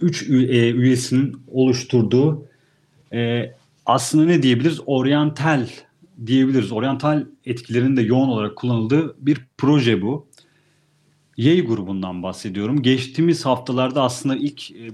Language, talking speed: Turkish, 115 wpm